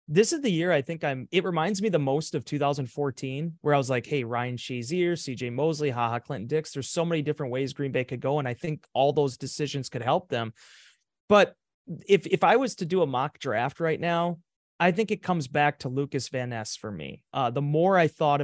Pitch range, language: 135-175 Hz, English